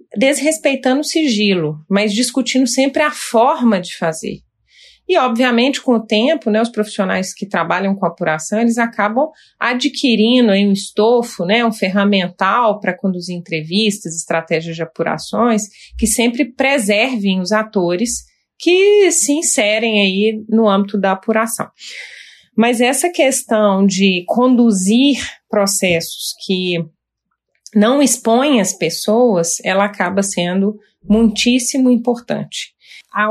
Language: Portuguese